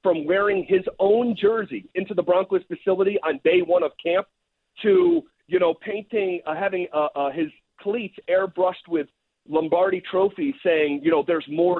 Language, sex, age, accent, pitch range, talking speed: English, male, 40-59, American, 180-245 Hz, 165 wpm